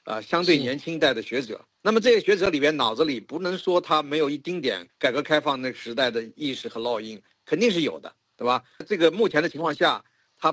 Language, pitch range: Chinese, 130-175 Hz